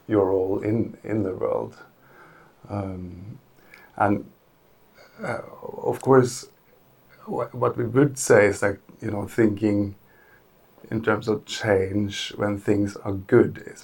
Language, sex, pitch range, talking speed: English, male, 95-110 Hz, 135 wpm